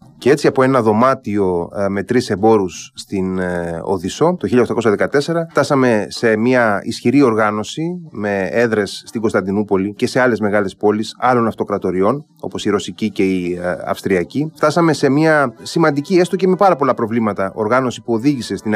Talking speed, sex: 155 wpm, male